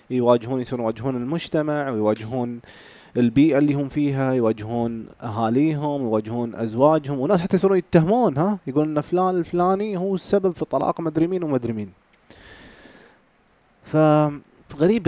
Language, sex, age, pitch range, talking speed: Arabic, male, 30-49, 120-160 Hz, 115 wpm